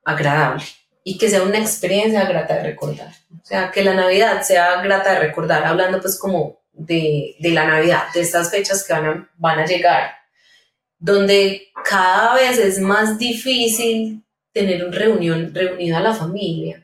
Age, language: 30-49, Spanish